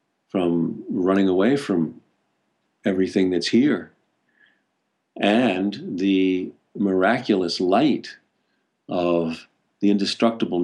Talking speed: 80 wpm